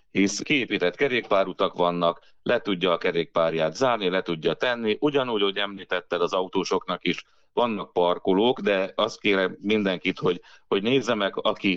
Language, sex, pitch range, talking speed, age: Hungarian, male, 90-120 Hz, 145 wpm, 30-49